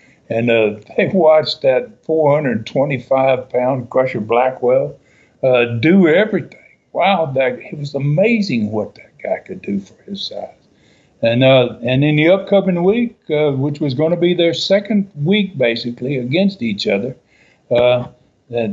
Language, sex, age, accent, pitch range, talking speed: English, male, 60-79, American, 125-185 Hz, 145 wpm